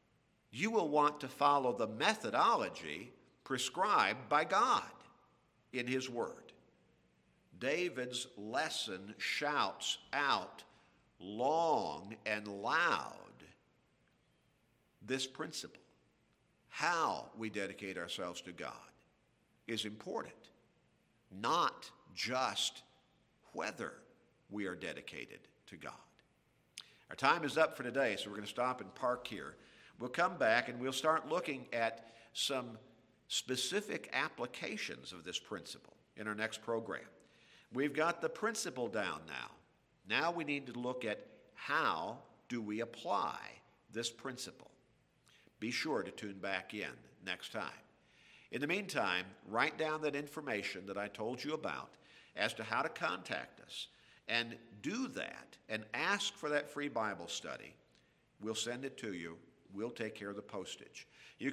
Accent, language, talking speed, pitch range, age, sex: American, English, 135 wpm, 110-145 Hz, 50-69, male